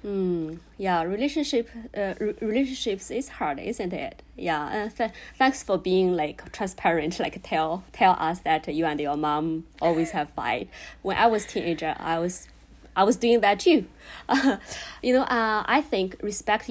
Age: 20-39